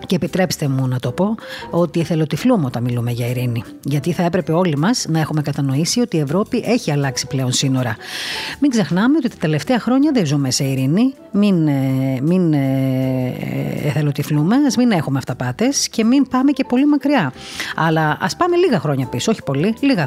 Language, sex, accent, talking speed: Greek, female, native, 175 wpm